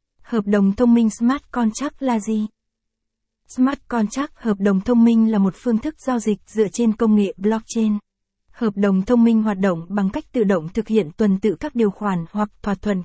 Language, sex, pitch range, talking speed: Vietnamese, female, 205-240 Hz, 205 wpm